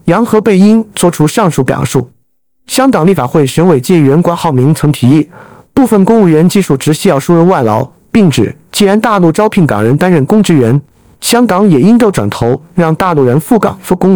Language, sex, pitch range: Chinese, male, 145-205 Hz